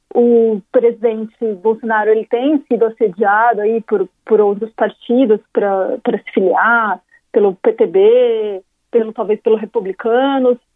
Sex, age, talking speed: female, 40-59, 115 wpm